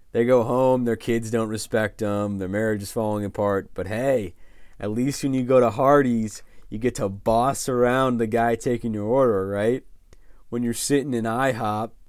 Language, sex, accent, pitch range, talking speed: English, male, American, 100-120 Hz, 190 wpm